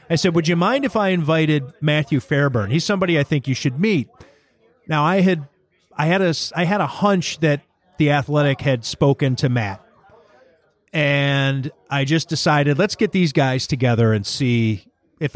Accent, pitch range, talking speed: American, 135-165 Hz, 180 wpm